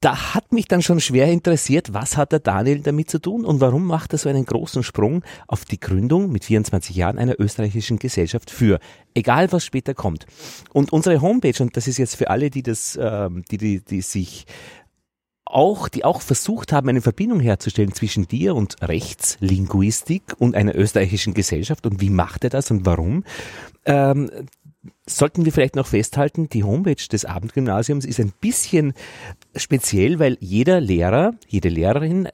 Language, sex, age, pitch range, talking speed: German, male, 40-59, 105-150 Hz, 175 wpm